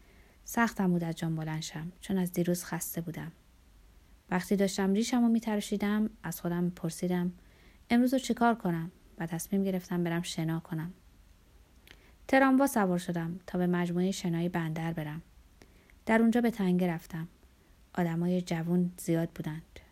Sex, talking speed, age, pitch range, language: female, 135 wpm, 20-39, 165-200 Hz, Persian